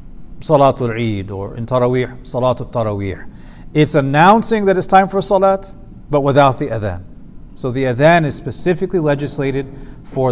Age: 50-69